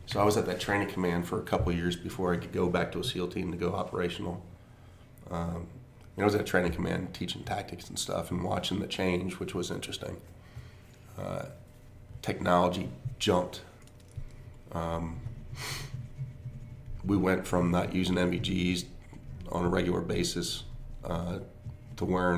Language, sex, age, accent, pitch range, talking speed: English, male, 30-49, American, 90-115 Hz, 155 wpm